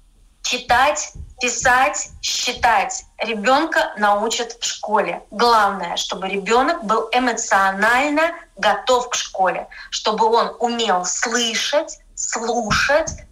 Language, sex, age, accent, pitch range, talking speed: Russian, female, 20-39, native, 240-300 Hz, 90 wpm